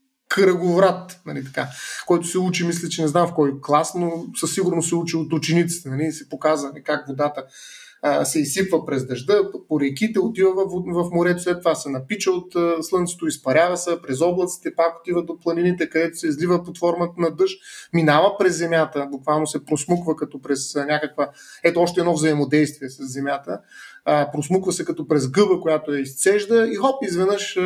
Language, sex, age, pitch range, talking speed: Bulgarian, male, 30-49, 150-180 Hz, 180 wpm